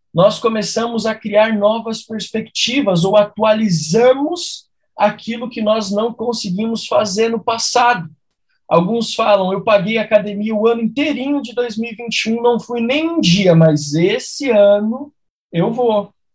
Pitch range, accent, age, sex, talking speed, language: 185-230 Hz, Brazilian, 20-39, male, 135 wpm, Portuguese